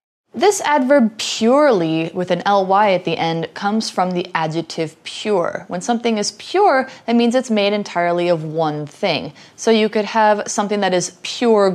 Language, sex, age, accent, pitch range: Chinese, female, 20-39, American, 165-240 Hz